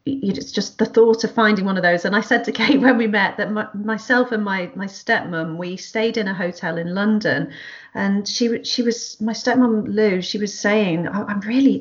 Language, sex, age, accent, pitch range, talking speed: English, female, 40-59, British, 200-255 Hz, 225 wpm